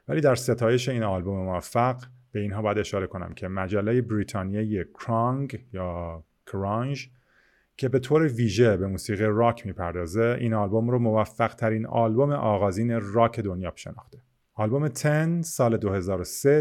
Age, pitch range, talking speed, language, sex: 30-49, 100-125 Hz, 140 wpm, Persian, male